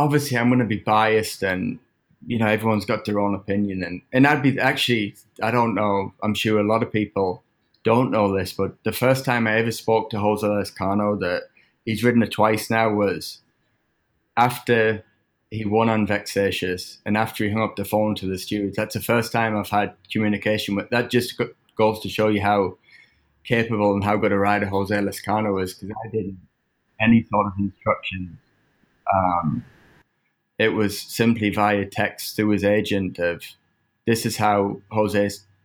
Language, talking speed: English, 180 wpm